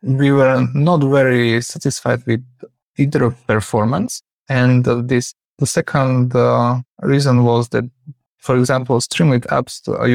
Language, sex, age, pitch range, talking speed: English, male, 20-39, 120-135 Hz, 135 wpm